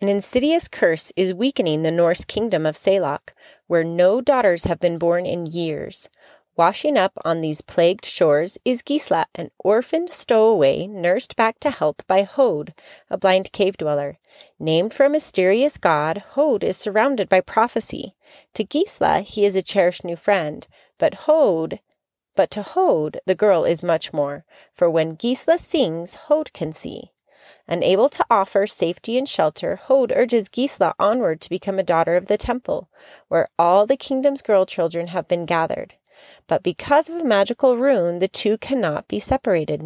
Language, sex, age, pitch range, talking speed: English, female, 30-49, 170-250 Hz, 165 wpm